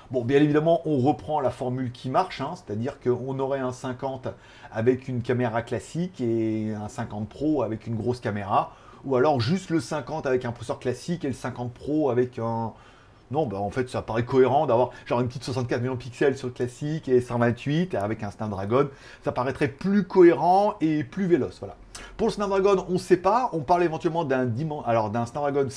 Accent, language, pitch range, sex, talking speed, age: French, French, 115-155 Hz, male, 195 wpm, 30-49